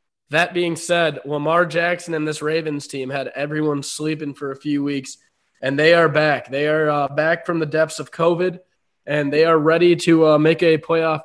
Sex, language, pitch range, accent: male, English, 150-170 Hz, American